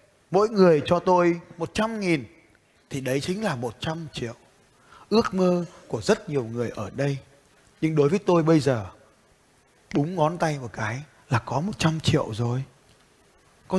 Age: 20-39